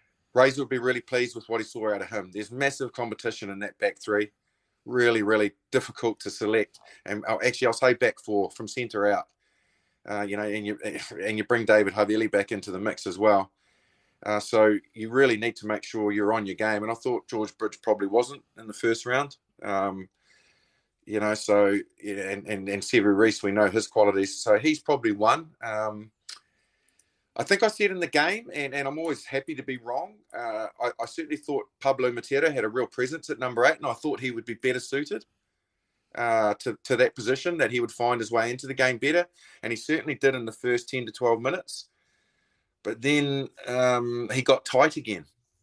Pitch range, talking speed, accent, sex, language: 105-130 Hz, 210 wpm, Australian, male, English